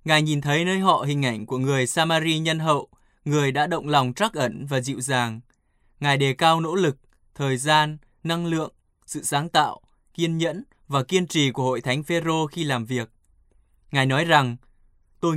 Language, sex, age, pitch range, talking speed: Vietnamese, male, 20-39, 130-165 Hz, 190 wpm